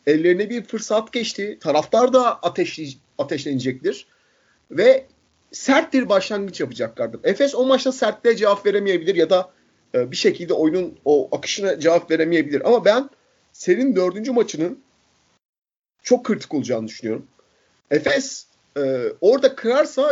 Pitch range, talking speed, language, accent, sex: 170-270 Hz, 120 wpm, Turkish, native, male